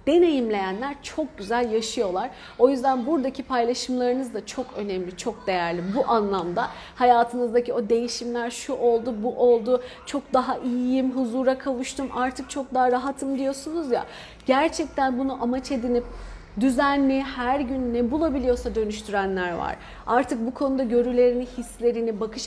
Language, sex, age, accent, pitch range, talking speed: Turkish, female, 40-59, native, 235-280 Hz, 135 wpm